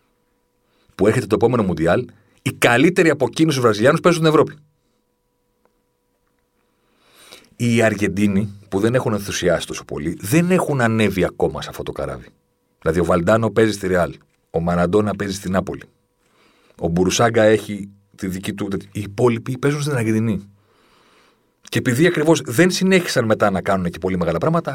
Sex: male